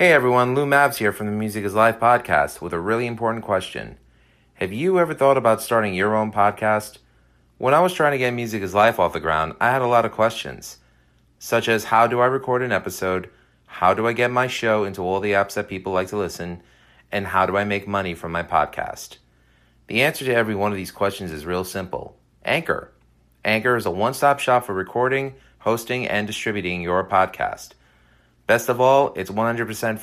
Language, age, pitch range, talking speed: English, 30-49, 90-115 Hz, 210 wpm